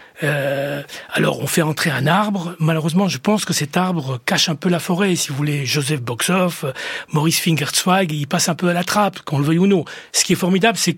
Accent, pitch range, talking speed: French, 150-190 Hz, 230 wpm